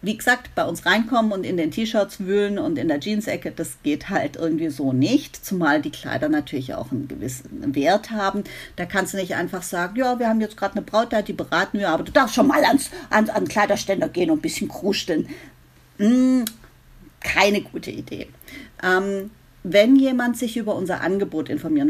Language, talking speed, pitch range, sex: German, 200 wpm, 175-235 Hz, female